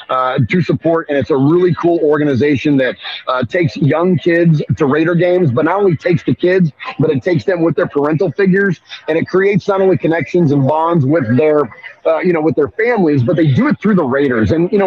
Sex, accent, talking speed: male, American, 230 wpm